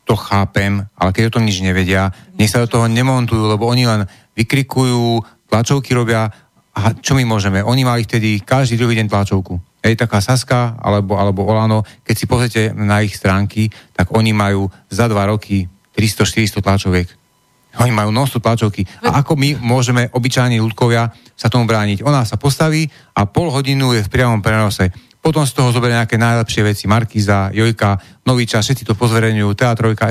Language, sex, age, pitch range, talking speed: Slovak, male, 40-59, 105-125 Hz, 175 wpm